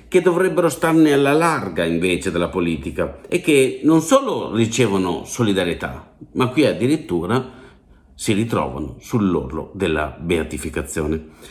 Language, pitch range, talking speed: Italian, 85-130 Hz, 115 wpm